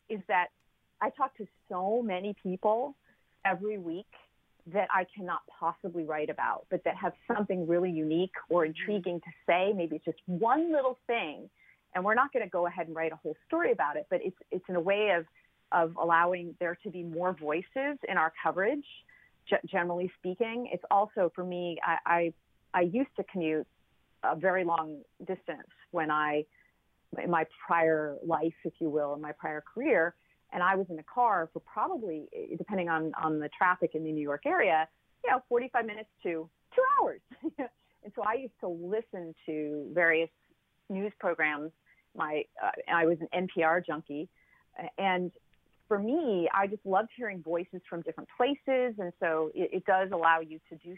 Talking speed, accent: 180 wpm, American